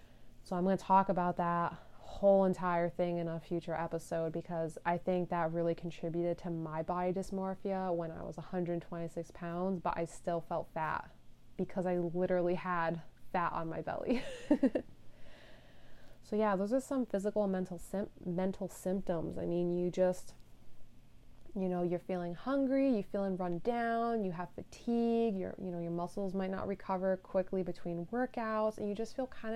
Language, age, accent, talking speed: English, 20-39, American, 180 wpm